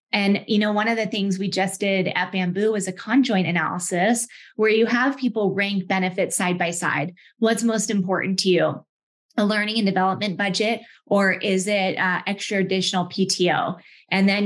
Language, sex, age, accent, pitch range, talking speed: English, female, 20-39, American, 185-215 Hz, 185 wpm